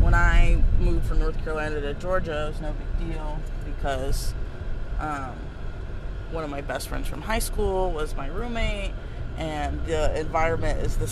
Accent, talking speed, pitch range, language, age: American, 165 wpm, 95-105 Hz, English, 20-39